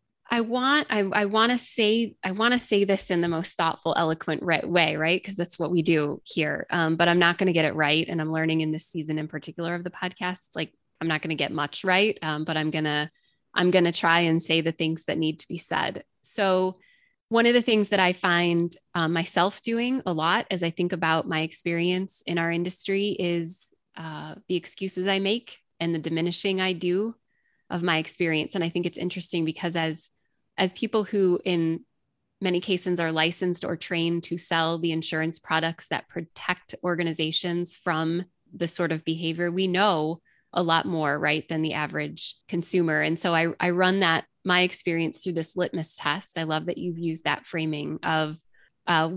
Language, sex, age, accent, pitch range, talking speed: English, female, 20-39, American, 160-180 Hz, 205 wpm